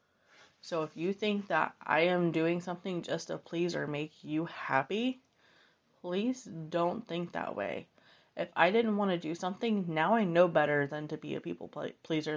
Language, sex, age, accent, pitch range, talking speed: English, female, 20-39, American, 155-190 Hz, 185 wpm